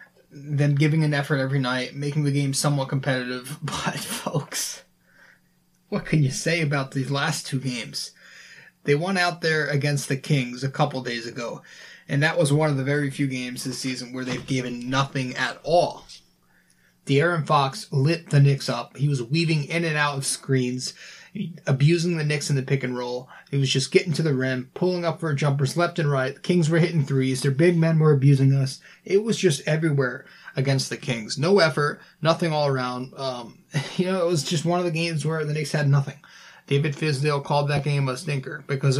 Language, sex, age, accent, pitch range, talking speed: English, male, 20-39, American, 135-165 Hz, 205 wpm